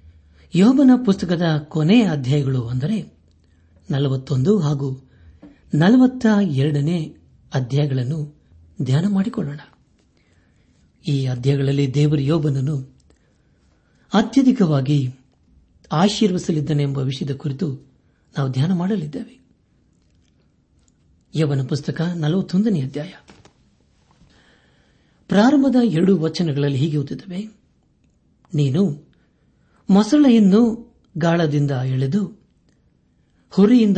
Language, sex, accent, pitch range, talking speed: Kannada, male, native, 125-180 Hz, 60 wpm